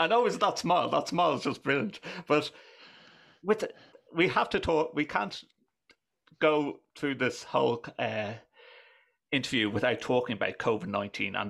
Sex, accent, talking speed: male, British, 150 wpm